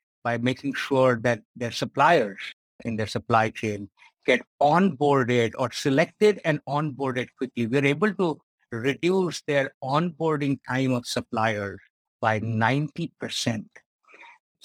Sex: male